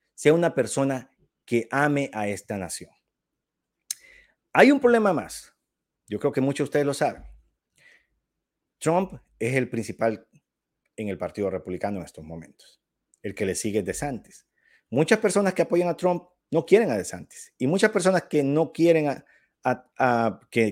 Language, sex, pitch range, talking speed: English, male, 110-170 Hz, 165 wpm